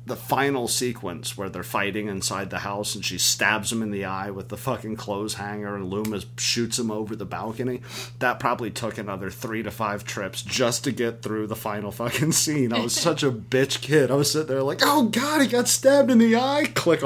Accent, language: American, English